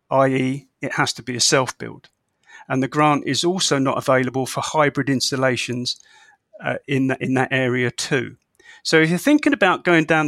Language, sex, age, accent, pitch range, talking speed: English, male, 40-59, British, 130-160 Hz, 180 wpm